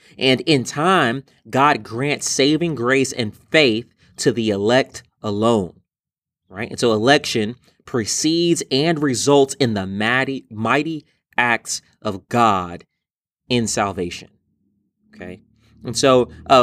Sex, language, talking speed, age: male, English, 115 wpm, 30-49